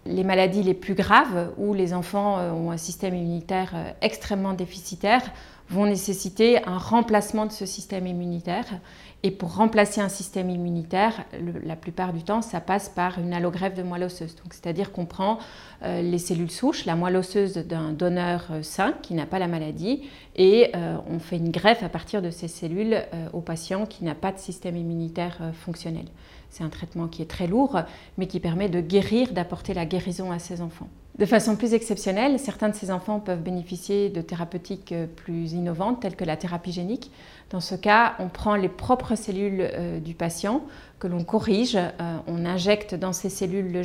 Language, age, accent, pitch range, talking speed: French, 30-49, French, 175-200 Hz, 180 wpm